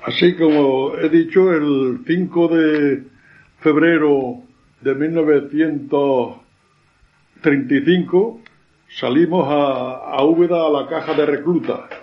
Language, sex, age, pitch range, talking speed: Spanish, male, 60-79, 145-175 Hz, 95 wpm